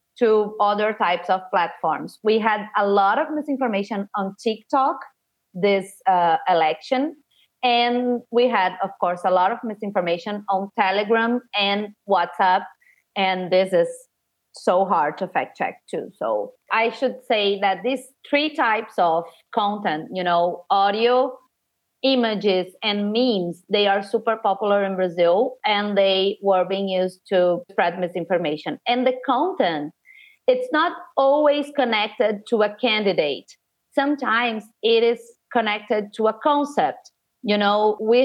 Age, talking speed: 30-49, 140 wpm